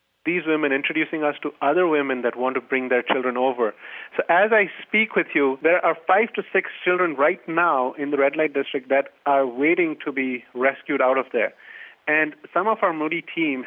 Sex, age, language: male, 30-49, English